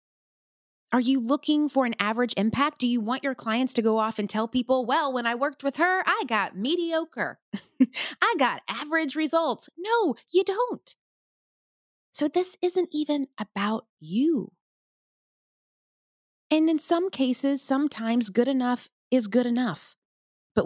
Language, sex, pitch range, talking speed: English, female, 200-255 Hz, 150 wpm